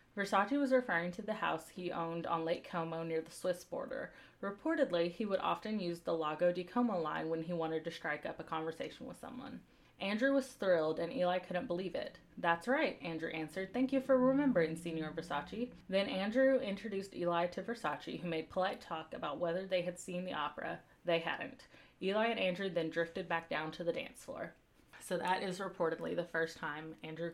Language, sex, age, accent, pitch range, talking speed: English, female, 20-39, American, 165-215 Hz, 200 wpm